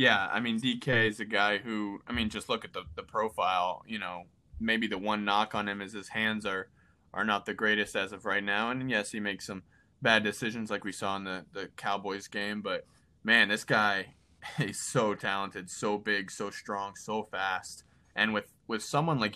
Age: 20-39